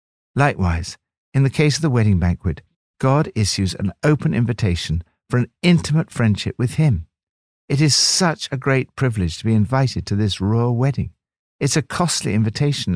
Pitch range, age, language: 95-155 Hz, 60-79, English